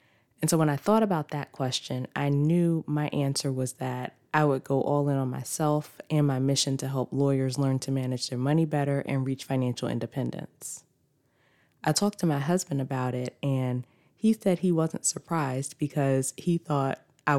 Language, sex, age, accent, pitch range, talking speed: English, female, 20-39, American, 130-155 Hz, 185 wpm